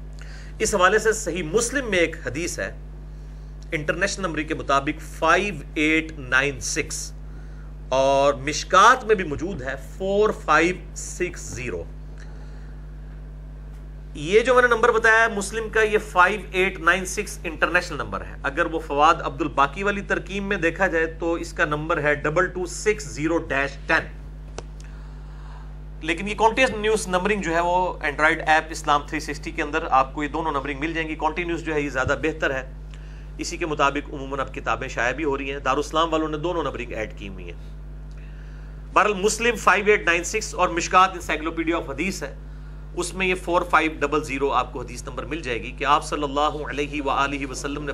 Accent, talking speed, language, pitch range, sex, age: Indian, 120 wpm, English, 145-175 Hz, male, 40-59